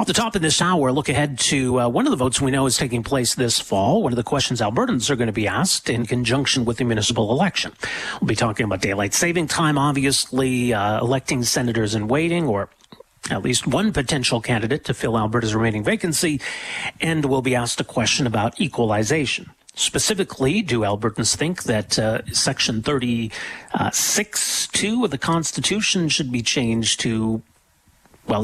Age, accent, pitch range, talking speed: 40-59, American, 115-155 Hz, 180 wpm